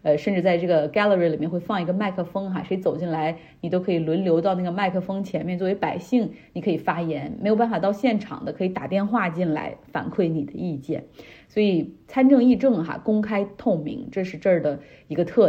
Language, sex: Chinese, female